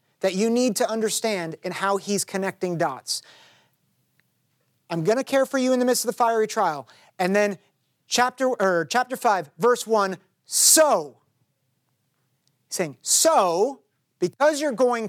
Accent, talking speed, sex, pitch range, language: American, 145 wpm, male, 170-235 Hz, English